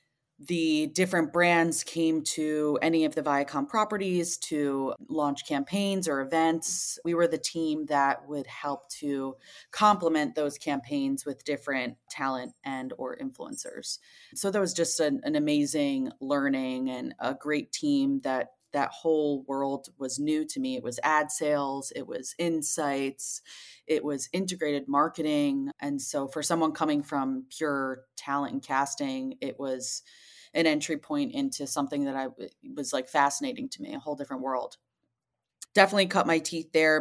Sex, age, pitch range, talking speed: female, 20-39, 140-185 Hz, 155 wpm